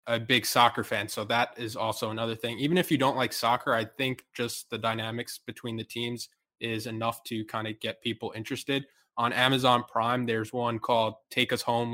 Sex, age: male, 20-39